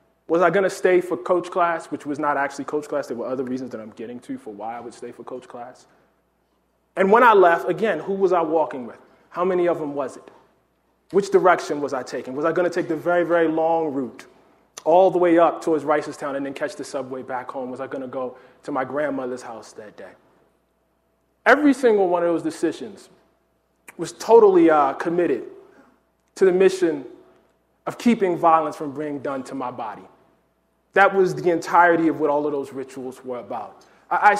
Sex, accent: male, American